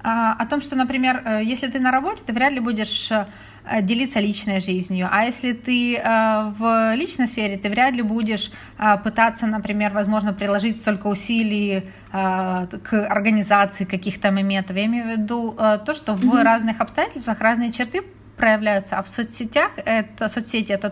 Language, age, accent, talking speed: Ukrainian, 30-49, native, 150 wpm